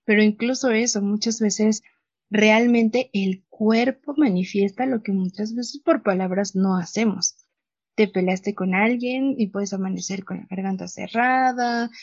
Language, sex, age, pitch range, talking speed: Spanish, female, 30-49, 190-225 Hz, 140 wpm